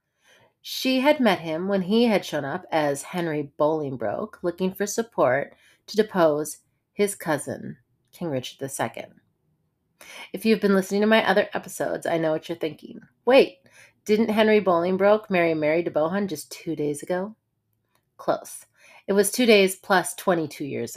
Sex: female